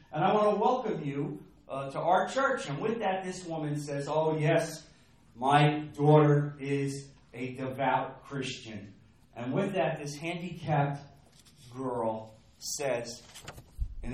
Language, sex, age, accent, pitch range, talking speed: English, male, 40-59, American, 120-180 Hz, 135 wpm